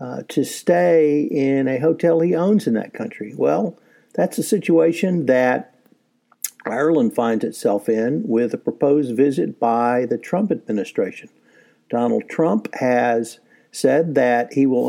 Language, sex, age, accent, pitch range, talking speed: English, male, 60-79, American, 120-155 Hz, 140 wpm